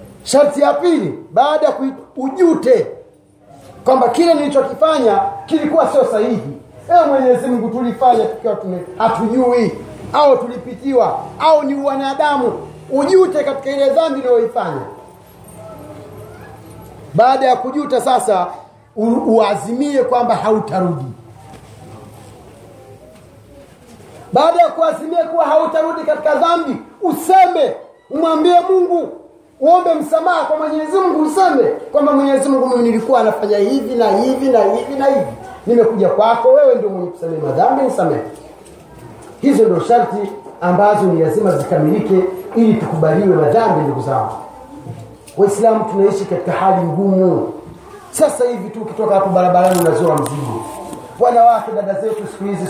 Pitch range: 200-310 Hz